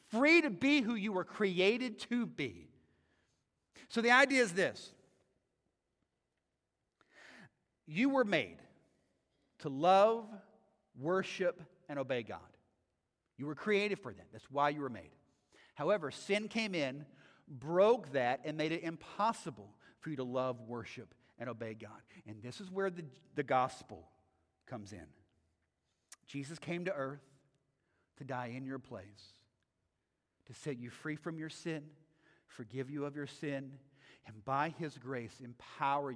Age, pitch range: 50-69, 120-170 Hz